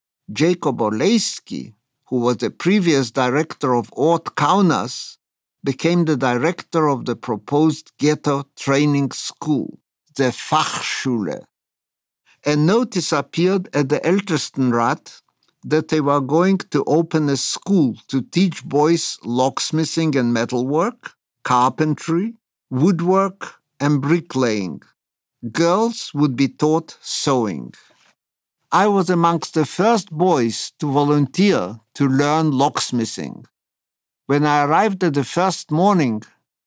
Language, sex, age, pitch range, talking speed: English, male, 50-69, 135-175 Hz, 110 wpm